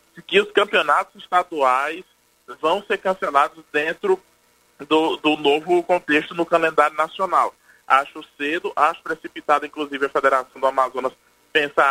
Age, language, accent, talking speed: 20-39, Portuguese, Brazilian, 125 wpm